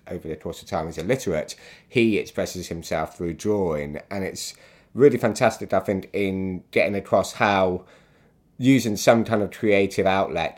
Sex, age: male, 30-49